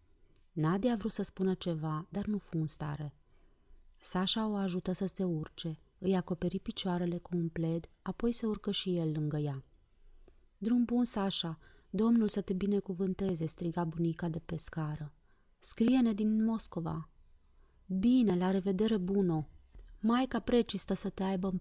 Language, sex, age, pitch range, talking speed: Romanian, female, 30-49, 160-195 Hz, 150 wpm